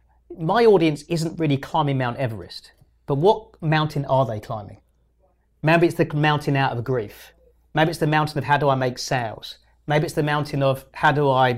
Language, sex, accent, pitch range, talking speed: English, male, British, 130-155 Hz, 195 wpm